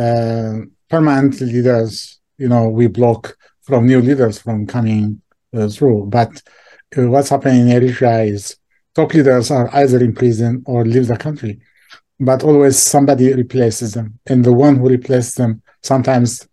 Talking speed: 155 wpm